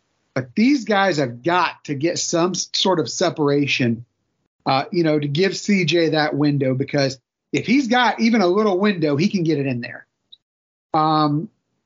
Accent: American